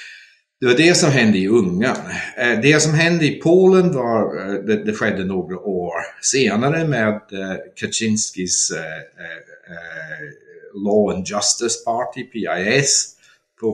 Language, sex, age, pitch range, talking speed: Swedish, male, 60-79, 95-155 Hz, 115 wpm